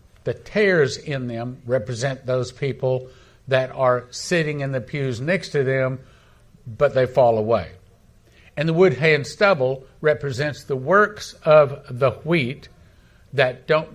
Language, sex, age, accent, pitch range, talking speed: English, male, 50-69, American, 115-155 Hz, 145 wpm